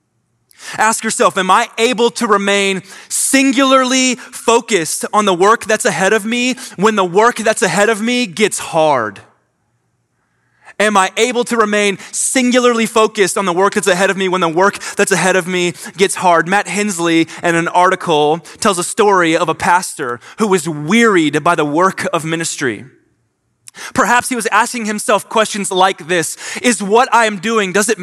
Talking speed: 175 wpm